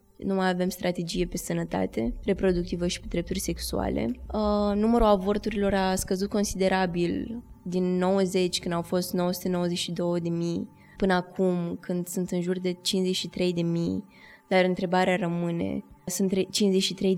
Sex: female